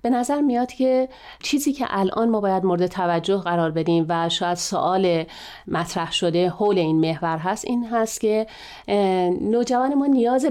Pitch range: 175-240 Hz